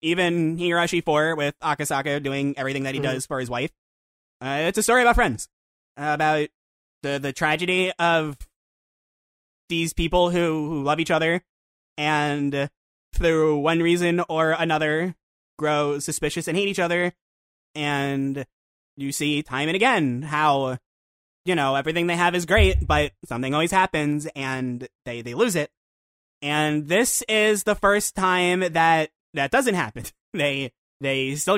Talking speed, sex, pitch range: 150 wpm, male, 135-170 Hz